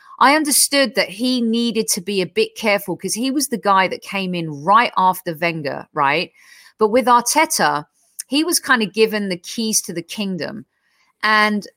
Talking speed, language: 185 wpm, English